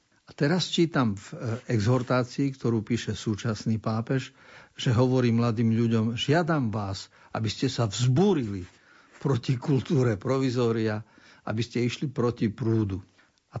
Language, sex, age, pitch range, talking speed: Slovak, male, 50-69, 105-130 Hz, 130 wpm